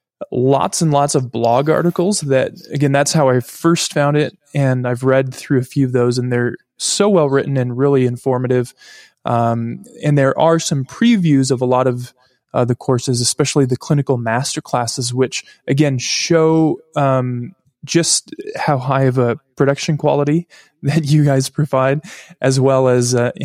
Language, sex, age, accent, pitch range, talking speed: English, male, 20-39, American, 125-145 Hz, 170 wpm